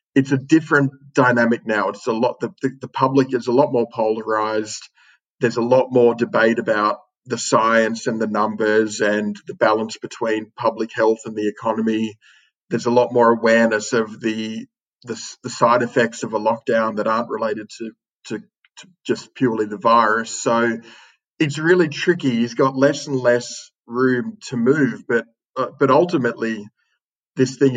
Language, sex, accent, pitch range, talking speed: English, male, Australian, 110-130 Hz, 170 wpm